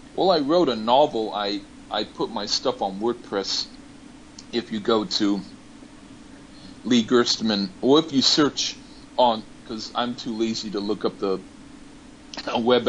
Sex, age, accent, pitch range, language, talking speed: male, 40-59, American, 100-115 Hz, English, 150 wpm